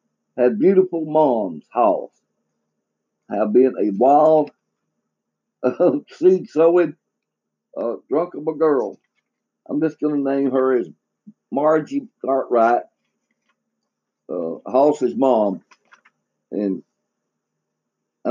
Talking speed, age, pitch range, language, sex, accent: 100 wpm, 60-79, 130-210 Hz, English, male, American